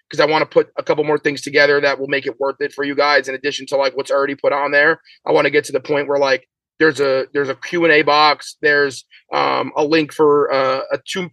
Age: 30-49